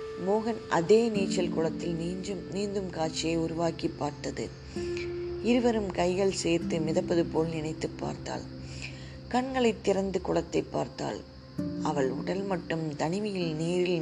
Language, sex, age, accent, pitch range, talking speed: Tamil, female, 20-39, native, 145-195 Hz, 105 wpm